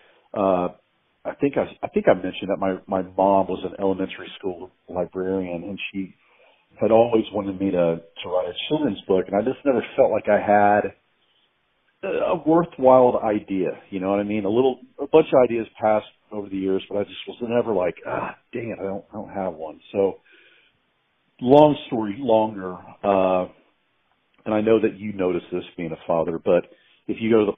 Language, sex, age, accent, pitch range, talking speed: English, male, 50-69, American, 95-110 Hz, 200 wpm